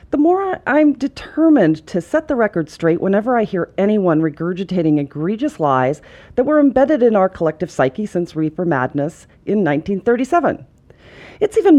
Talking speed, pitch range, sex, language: 155 wpm, 160-240 Hz, female, English